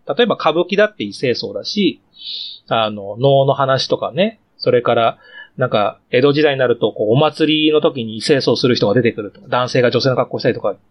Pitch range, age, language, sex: 145-225 Hz, 30-49, Japanese, male